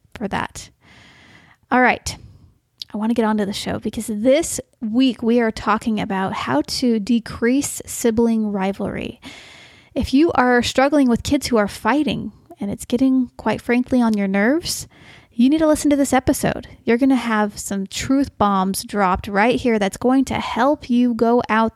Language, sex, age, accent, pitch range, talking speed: English, female, 30-49, American, 210-250 Hz, 175 wpm